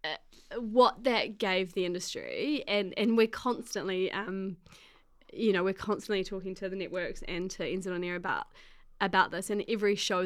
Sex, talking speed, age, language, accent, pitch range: female, 175 wpm, 20-39, English, Australian, 180-210 Hz